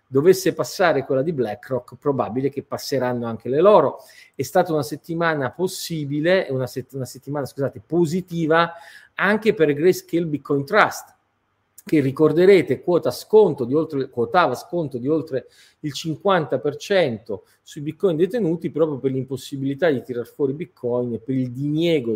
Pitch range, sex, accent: 125-170 Hz, male, native